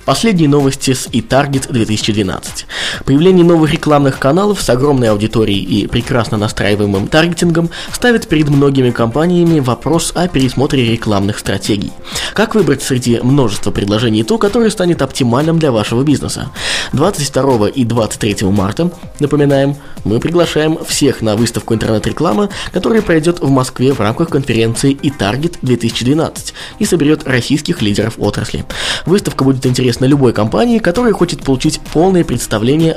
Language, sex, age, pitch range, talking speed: Russian, male, 20-39, 115-165 Hz, 135 wpm